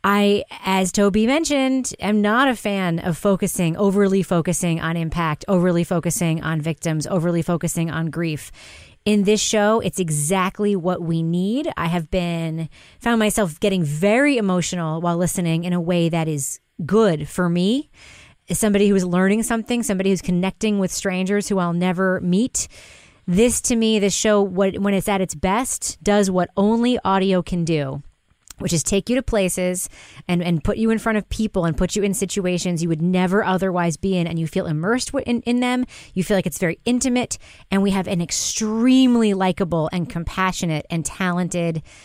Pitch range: 170-210 Hz